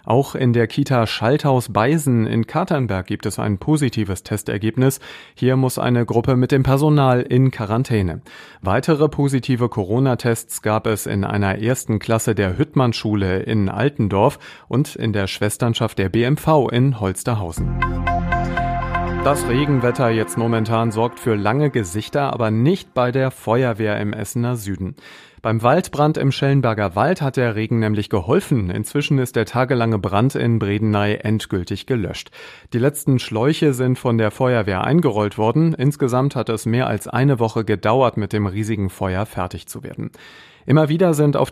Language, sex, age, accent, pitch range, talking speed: German, male, 40-59, German, 105-135 Hz, 150 wpm